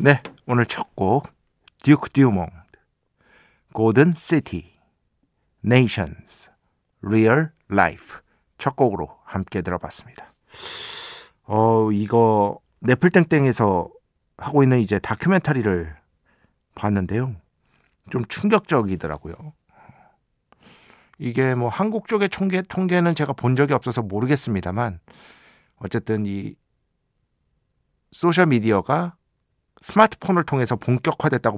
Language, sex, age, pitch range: Korean, male, 50-69, 100-145 Hz